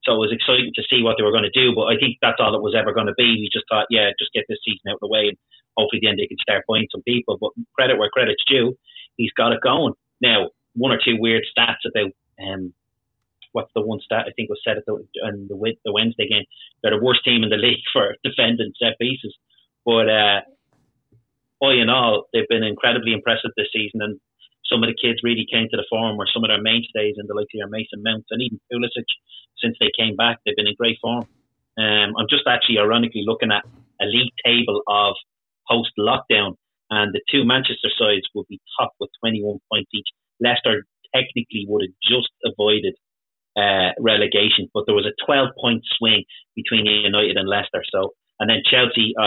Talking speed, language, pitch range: 220 wpm, English, 105-120 Hz